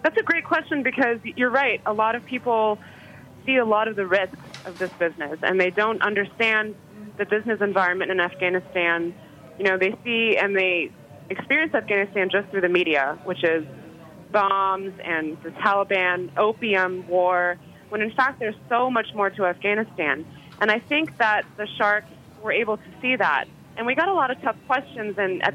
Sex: female